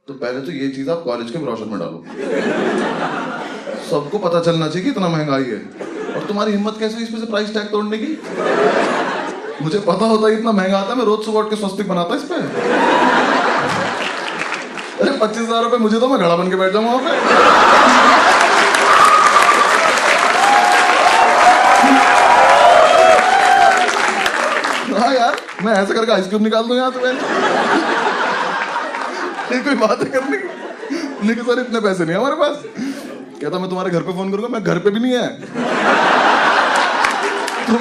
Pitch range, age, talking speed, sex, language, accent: 185-250 Hz, 20-39, 85 wpm, male, English, Indian